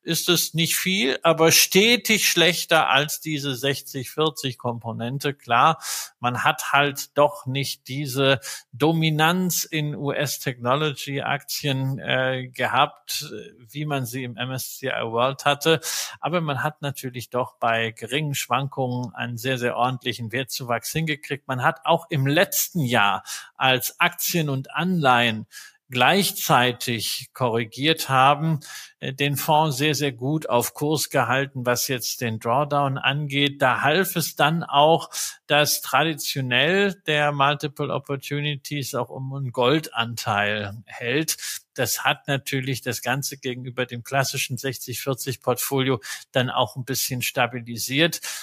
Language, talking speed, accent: German, 120 wpm, German